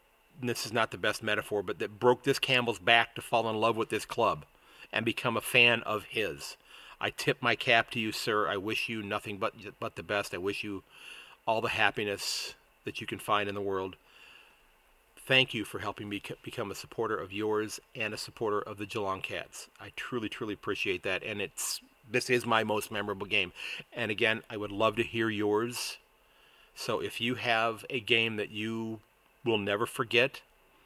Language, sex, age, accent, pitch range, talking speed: English, male, 40-59, American, 105-125 Hz, 200 wpm